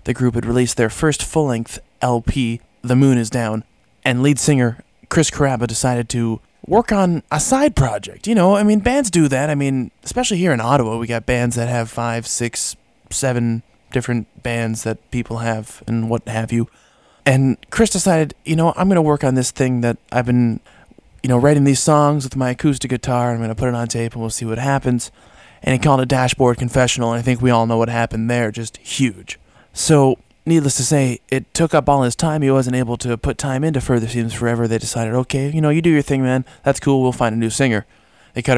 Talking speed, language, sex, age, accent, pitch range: 230 wpm, English, male, 20-39, American, 115-140 Hz